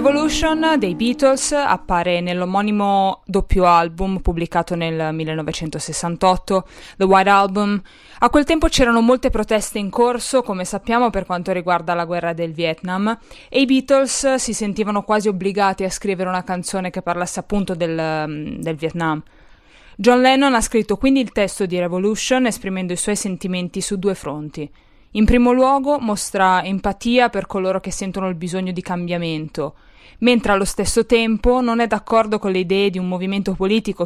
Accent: native